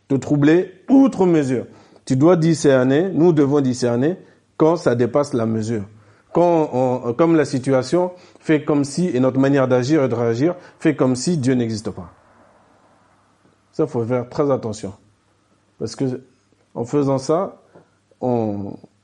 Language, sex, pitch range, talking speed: French, male, 105-145 Hz, 150 wpm